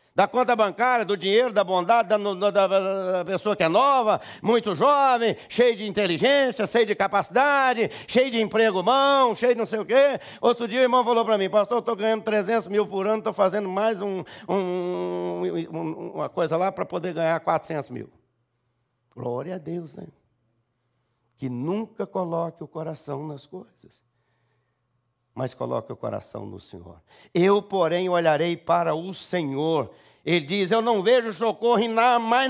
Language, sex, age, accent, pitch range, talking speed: Portuguese, male, 60-79, Brazilian, 175-230 Hz, 165 wpm